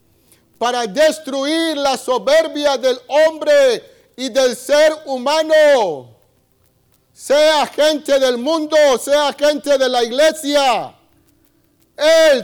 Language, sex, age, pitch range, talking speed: Spanish, male, 50-69, 220-310 Hz, 95 wpm